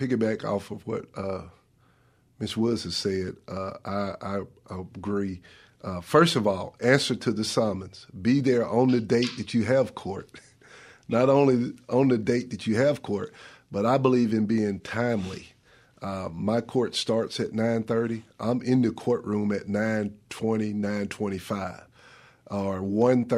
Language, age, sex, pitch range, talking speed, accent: English, 50-69, male, 105-125 Hz, 150 wpm, American